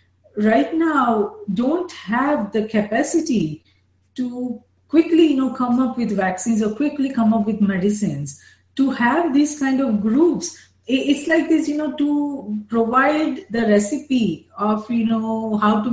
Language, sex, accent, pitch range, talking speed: English, female, Indian, 210-290 Hz, 150 wpm